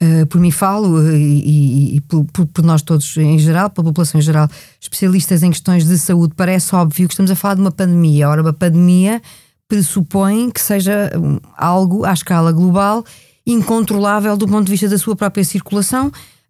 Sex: female